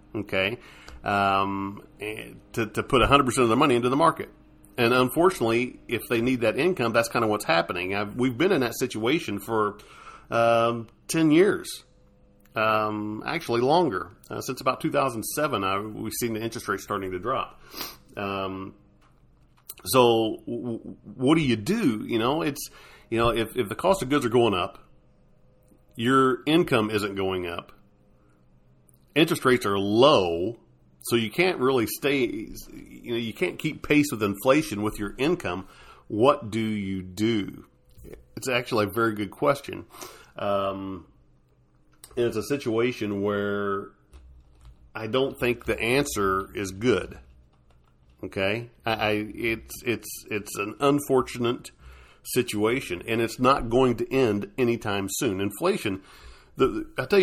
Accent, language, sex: American, English, male